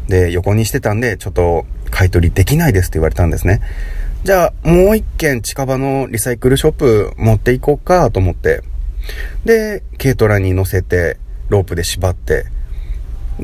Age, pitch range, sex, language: 30-49, 80-115 Hz, male, Japanese